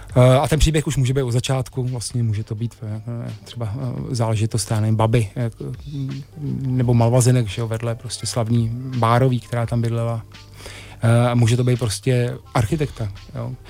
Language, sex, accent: Czech, male, native